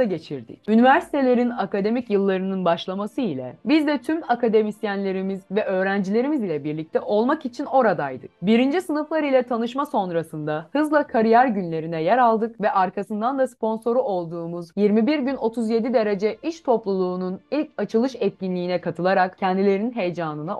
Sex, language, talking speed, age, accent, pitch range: female, Turkish, 130 wpm, 30-49, native, 185-255 Hz